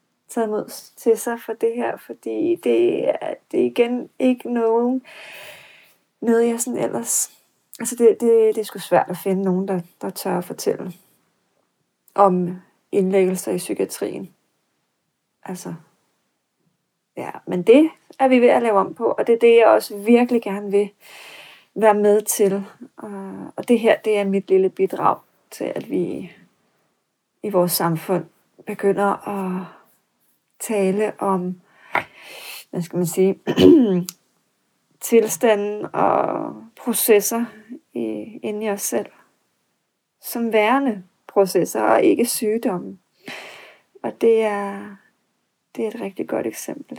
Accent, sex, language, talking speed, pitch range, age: native, female, Danish, 135 wpm, 190-235 Hz, 30-49